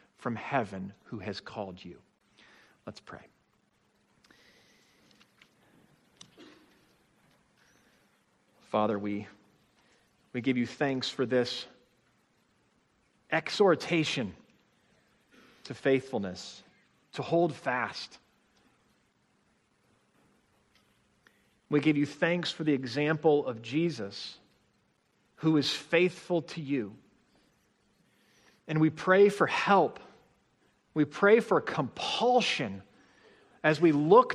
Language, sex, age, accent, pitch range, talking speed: English, male, 40-59, American, 130-175 Hz, 85 wpm